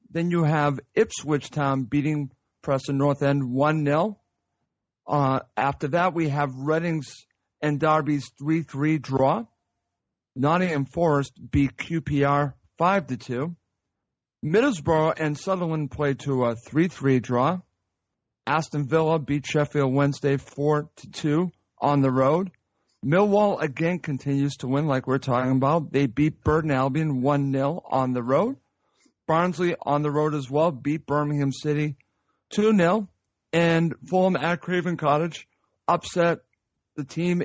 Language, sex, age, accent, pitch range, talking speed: English, male, 50-69, American, 135-165 Hz, 125 wpm